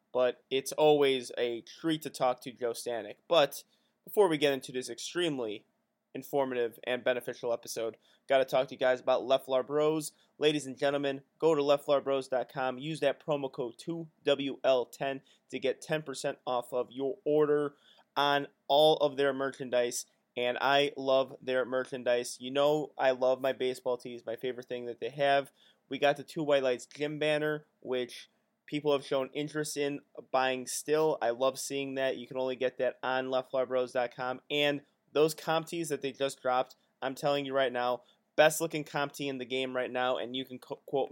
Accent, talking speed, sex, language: American, 175 wpm, male, English